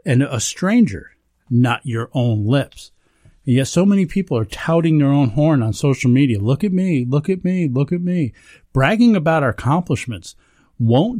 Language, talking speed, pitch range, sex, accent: English, 180 wpm, 110-160 Hz, male, American